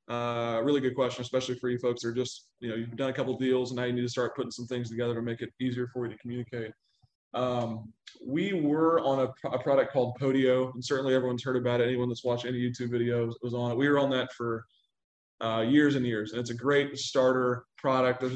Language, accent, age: English, American, 20-39